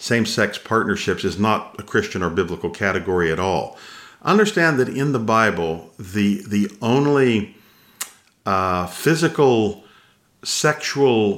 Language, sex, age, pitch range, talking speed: English, male, 50-69, 90-105 Hz, 115 wpm